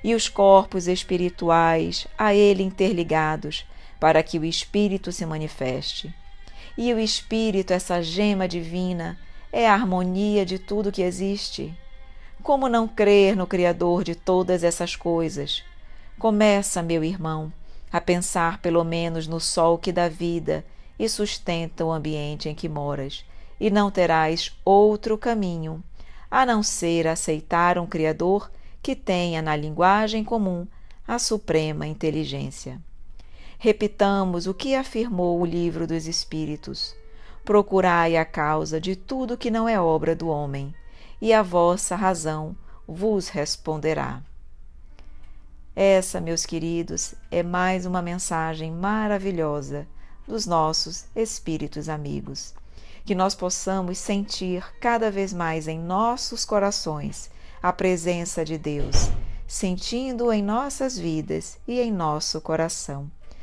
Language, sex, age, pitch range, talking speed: Portuguese, female, 40-59, 160-200 Hz, 125 wpm